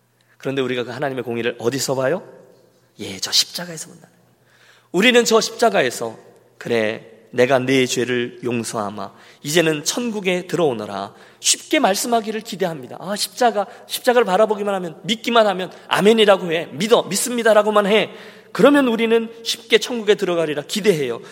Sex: male